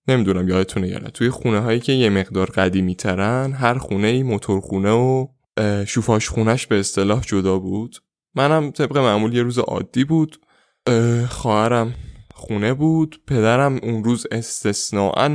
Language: Persian